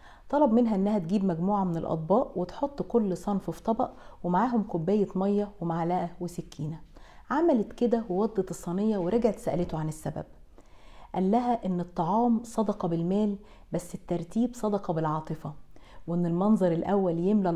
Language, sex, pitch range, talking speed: English, female, 175-225 Hz, 135 wpm